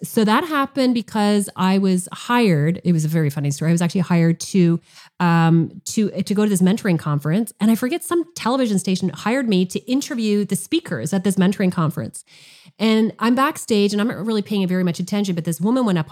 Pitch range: 170-215 Hz